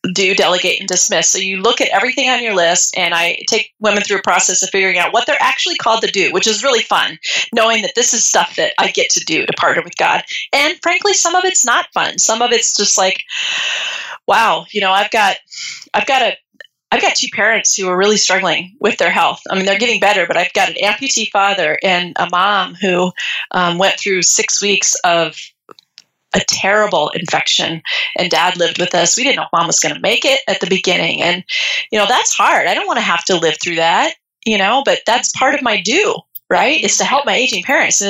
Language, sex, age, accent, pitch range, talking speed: English, female, 30-49, American, 190-260 Hz, 240 wpm